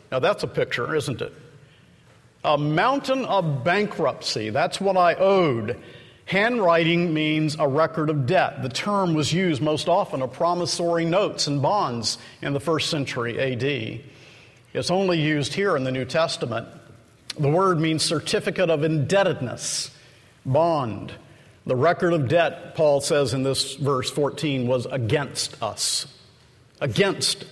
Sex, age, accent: male, 50-69, American